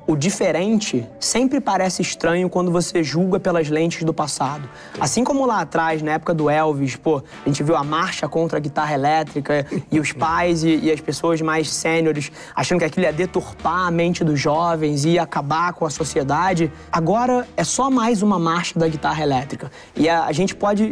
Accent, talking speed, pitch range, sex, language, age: Brazilian, 190 wpm, 145-175 Hz, male, Portuguese, 20-39